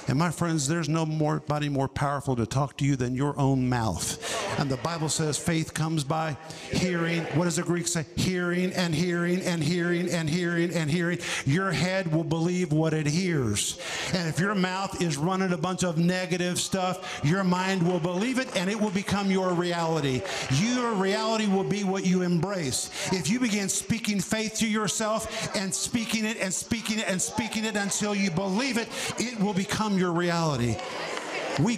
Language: English